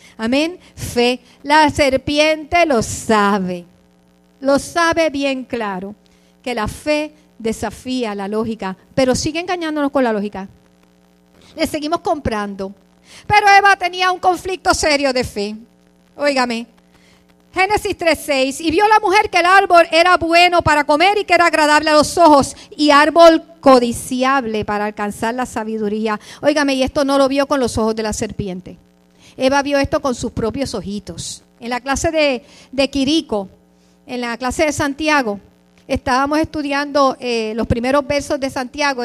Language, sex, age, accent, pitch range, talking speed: English, female, 50-69, American, 220-310 Hz, 150 wpm